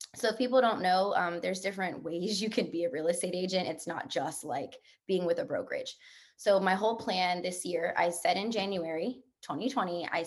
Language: English